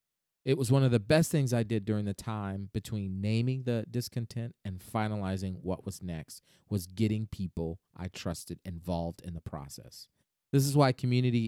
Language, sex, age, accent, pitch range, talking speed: English, male, 40-59, American, 100-130 Hz, 180 wpm